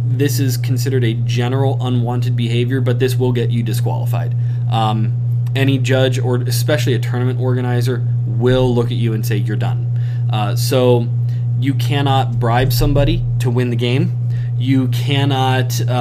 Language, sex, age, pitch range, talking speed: English, male, 20-39, 120-135 Hz, 155 wpm